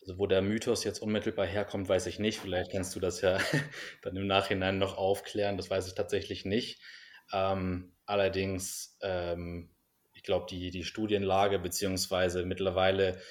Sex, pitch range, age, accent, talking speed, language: male, 90-100 Hz, 20-39, German, 160 wpm, German